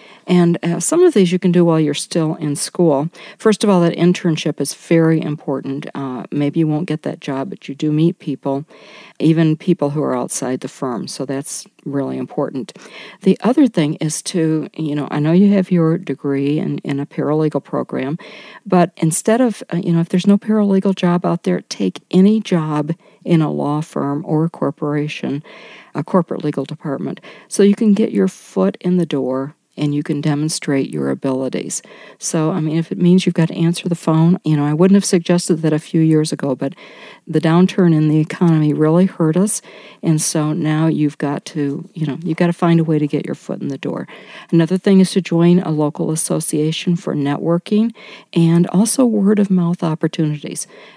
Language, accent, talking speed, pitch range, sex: English, American, 200 wpm, 150-185 Hz, female